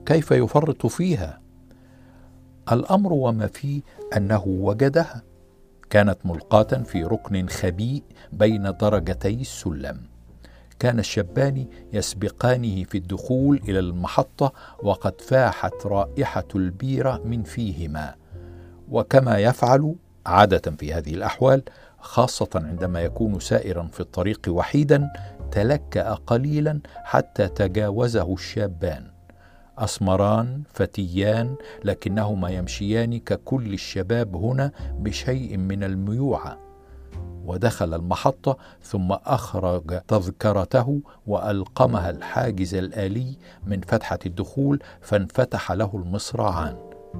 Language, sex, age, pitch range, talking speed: Arabic, male, 60-79, 90-120 Hz, 90 wpm